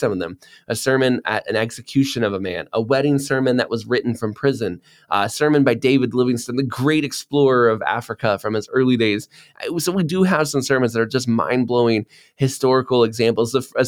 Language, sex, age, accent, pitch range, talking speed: English, male, 20-39, American, 110-140 Hz, 205 wpm